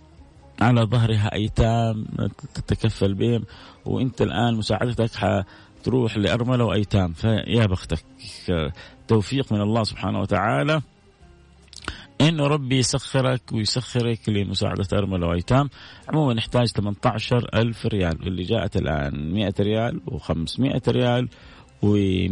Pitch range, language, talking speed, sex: 95-125 Hz, Arabic, 100 wpm, male